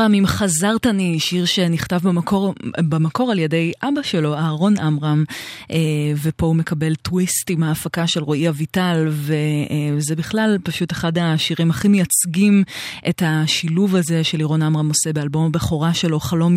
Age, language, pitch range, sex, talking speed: 20-39, Hebrew, 155-185 Hz, female, 145 wpm